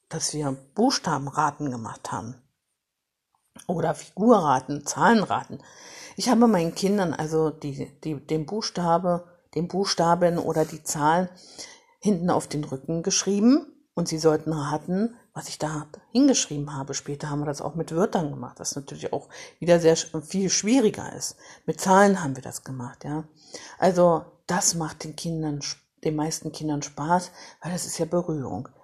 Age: 50-69